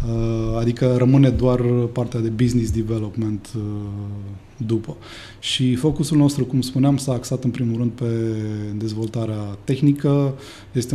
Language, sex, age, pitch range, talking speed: Romanian, male, 20-39, 105-125 Hz, 120 wpm